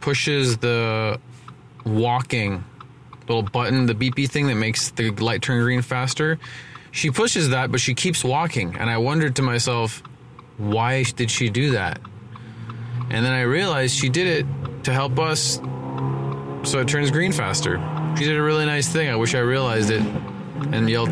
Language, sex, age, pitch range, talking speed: English, male, 20-39, 120-135 Hz, 170 wpm